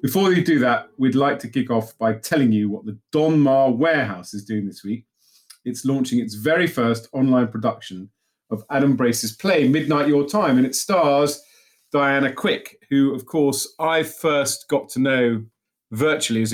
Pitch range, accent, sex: 110-140 Hz, British, male